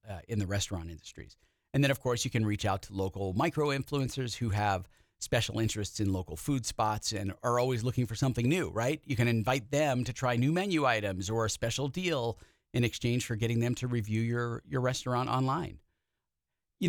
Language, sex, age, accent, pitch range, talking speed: English, male, 40-59, American, 105-135 Hz, 205 wpm